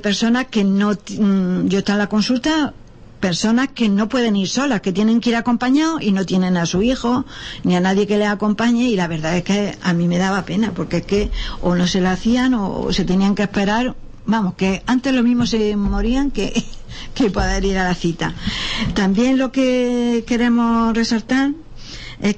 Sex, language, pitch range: female, Spanish, 190-230 Hz